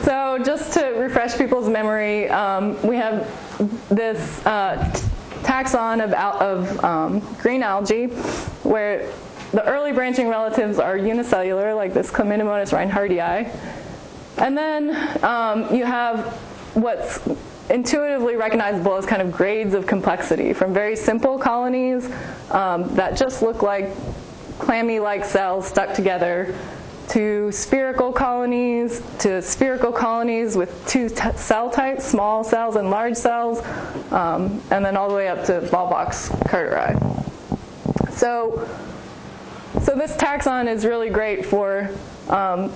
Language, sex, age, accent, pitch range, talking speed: English, female, 20-39, American, 200-245 Hz, 130 wpm